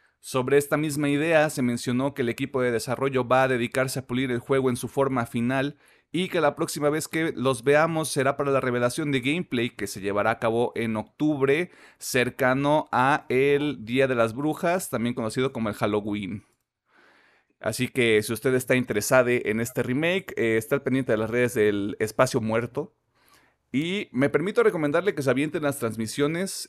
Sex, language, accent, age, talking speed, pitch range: male, Spanish, Mexican, 30-49, 185 wpm, 115-140 Hz